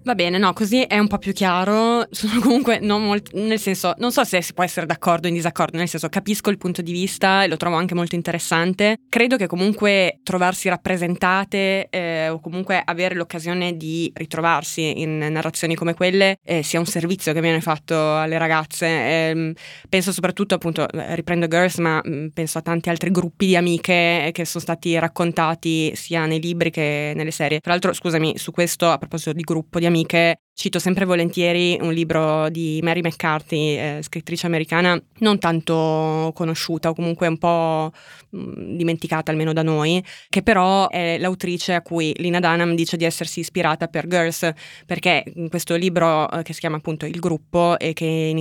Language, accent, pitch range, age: Italian, native, 160-180 Hz, 20-39